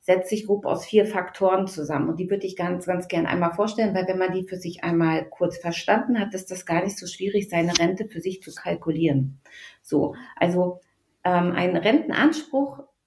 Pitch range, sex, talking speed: 175-215 Hz, female, 195 wpm